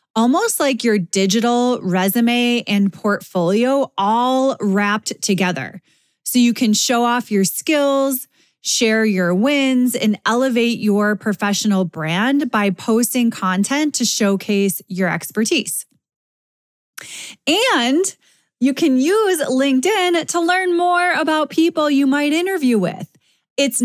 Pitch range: 210-280 Hz